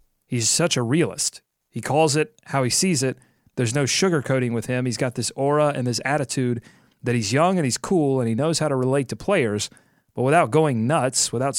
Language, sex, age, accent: English, male, 30-49, American